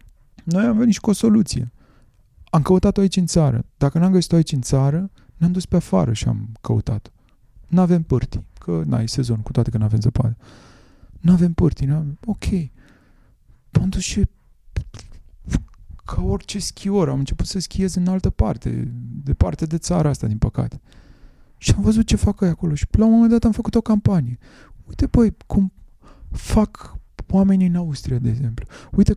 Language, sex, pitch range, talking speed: Romanian, male, 115-180 Hz, 170 wpm